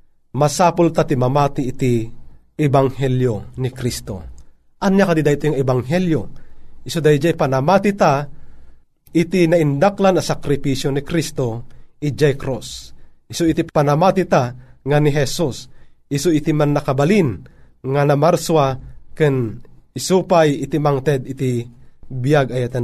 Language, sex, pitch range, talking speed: Filipino, male, 135-175 Hz, 115 wpm